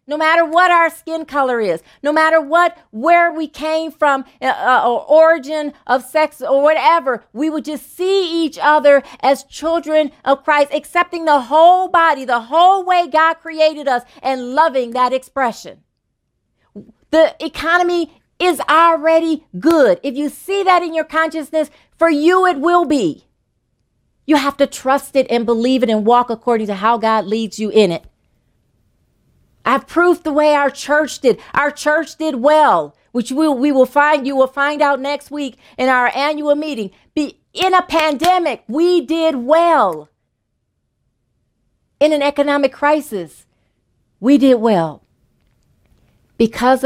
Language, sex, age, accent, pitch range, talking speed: English, female, 40-59, American, 230-315 Hz, 155 wpm